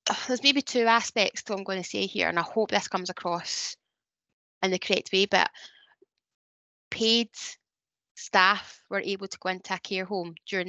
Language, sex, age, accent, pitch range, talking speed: English, female, 20-39, British, 185-215 Hz, 185 wpm